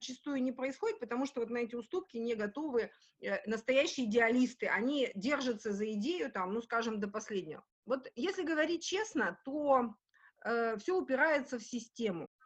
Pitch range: 220-285 Hz